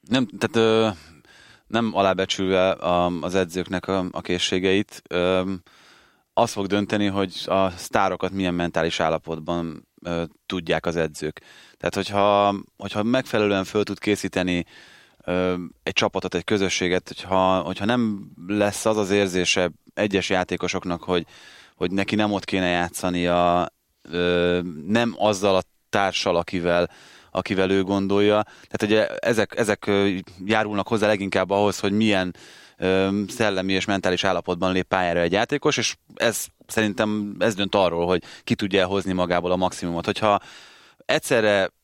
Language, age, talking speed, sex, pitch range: Hungarian, 20-39, 135 wpm, male, 90-105 Hz